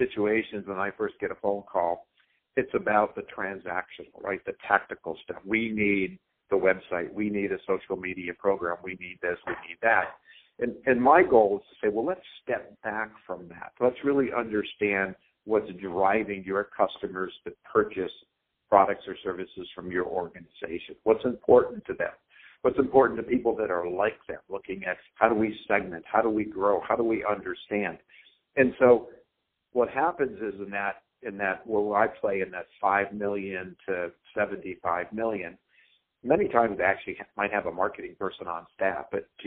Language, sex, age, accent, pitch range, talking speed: English, male, 50-69, American, 95-115 Hz, 180 wpm